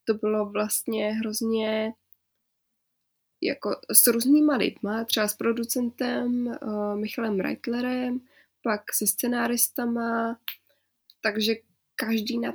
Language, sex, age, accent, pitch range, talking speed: Czech, female, 20-39, native, 210-240 Hz, 90 wpm